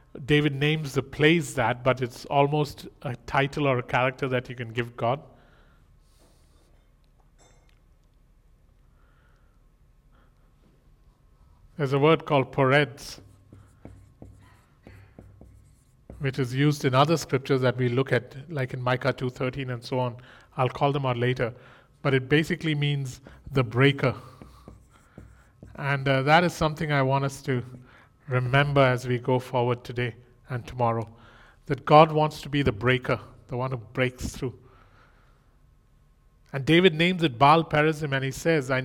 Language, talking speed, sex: English, 140 wpm, male